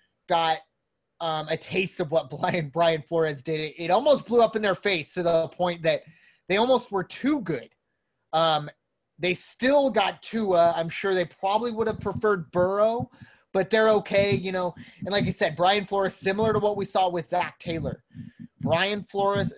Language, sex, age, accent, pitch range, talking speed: English, male, 30-49, American, 160-205 Hz, 185 wpm